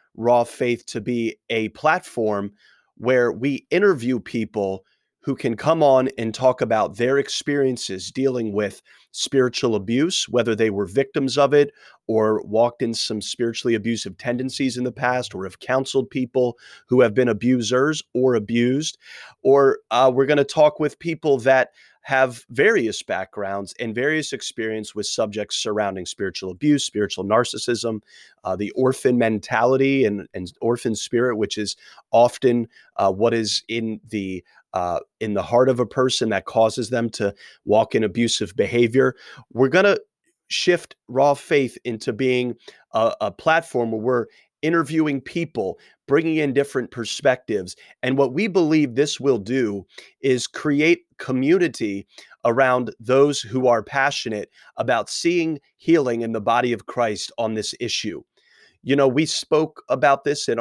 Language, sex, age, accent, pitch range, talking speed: English, male, 30-49, American, 115-140 Hz, 150 wpm